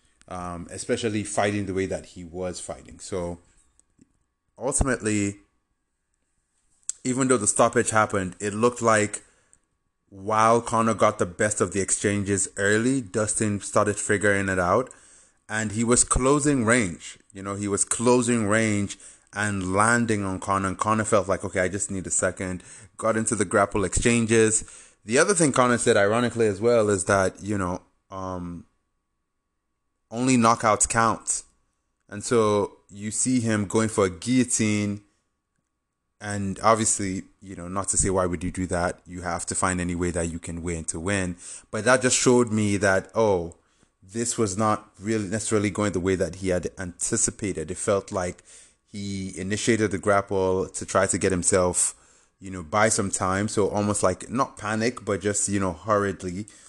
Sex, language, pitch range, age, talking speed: male, English, 95-110 Hz, 20-39, 165 wpm